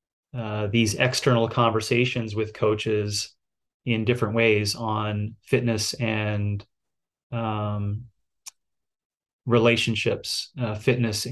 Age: 30-49